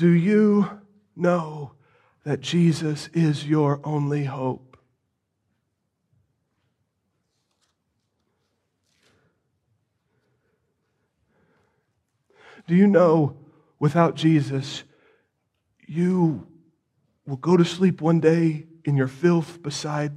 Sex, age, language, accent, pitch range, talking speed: male, 40-59, English, American, 145-215 Hz, 75 wpm